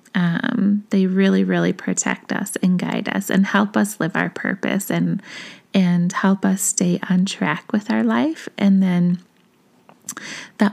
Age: 20-39